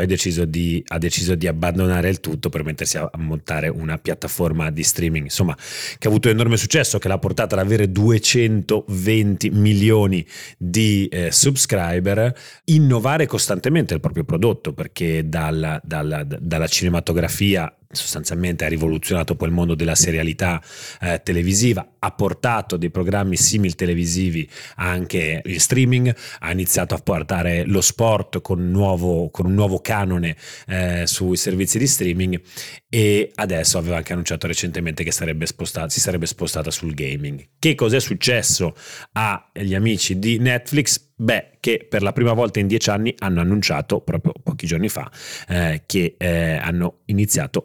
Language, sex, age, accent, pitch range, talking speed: Italian, male, 30-49, native, 85-105 Hz, 150 wpm